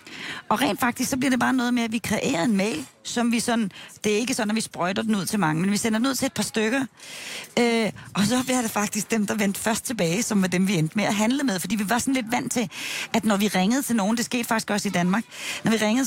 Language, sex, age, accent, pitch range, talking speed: Danish, female, 30-49, native, 190-240 Hz, 295 wpm